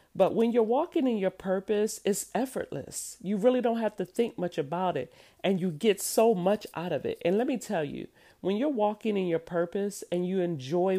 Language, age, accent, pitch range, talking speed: English, 40-59, American, 165-200 Hz, 220 wpm